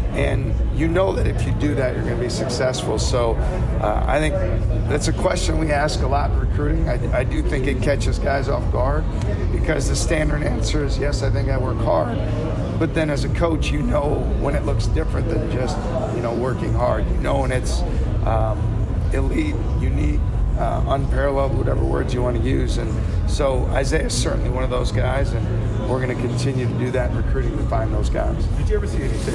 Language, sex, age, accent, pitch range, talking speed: English, male, 40-59, American, 90-125 Hz, 215 wpm